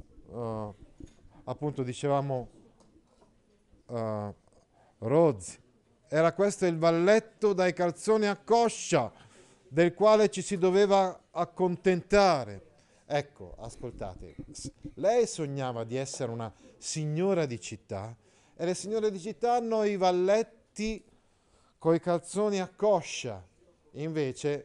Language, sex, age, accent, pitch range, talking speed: Italian, male, 40-59, native, 125-175 Hz, 100 wpm